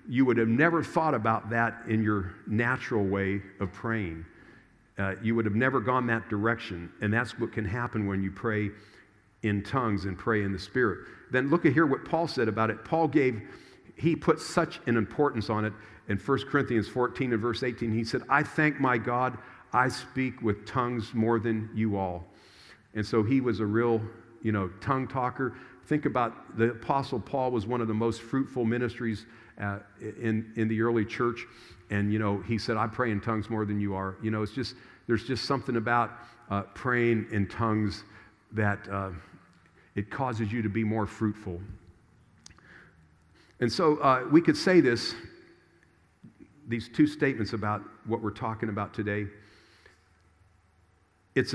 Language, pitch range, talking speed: English, 100-125 Hz, 180 wpm